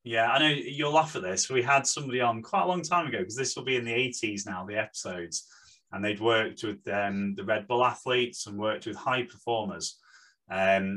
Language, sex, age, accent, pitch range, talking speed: English, male, 30-49, British, 100-140 Hz, 225 wpm